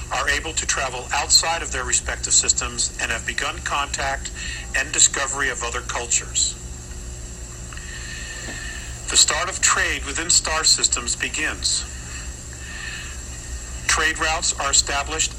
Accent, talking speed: American, 115 wpm